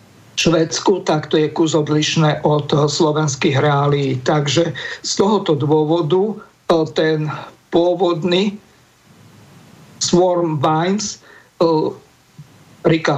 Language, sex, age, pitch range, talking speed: Slovak, male, 50-69, 150-170 Hz, 80 wpm